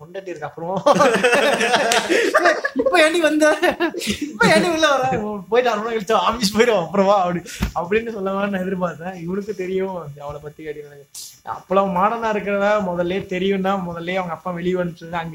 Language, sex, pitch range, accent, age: Tamil, male, 175-220 Hz, native, 20-39